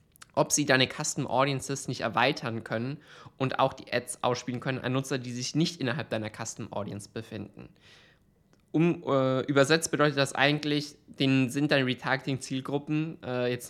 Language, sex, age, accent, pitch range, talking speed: German, male, 20-39, German, 120-145 Hz, 150 wpm